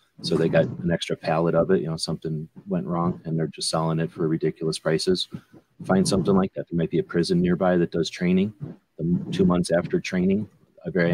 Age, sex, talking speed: 30-49, male, 220 wpm